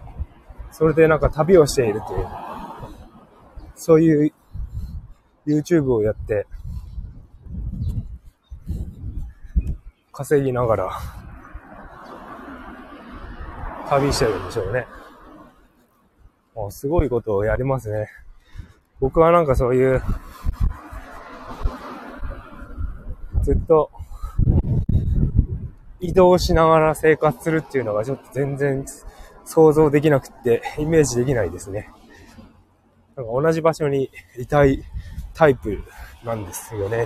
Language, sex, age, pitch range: Japanese, male, 20-39, 105-155 Hz